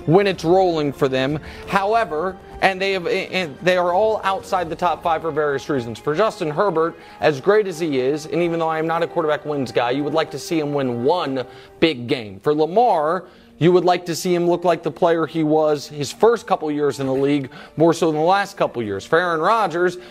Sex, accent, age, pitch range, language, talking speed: male, American, 30-49, 145-185 Hz, English, 235 wpm